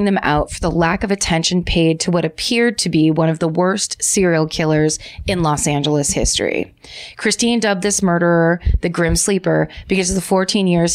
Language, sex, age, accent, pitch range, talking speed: English, female, 30-49, American, 165-195 Hz, 190 wpm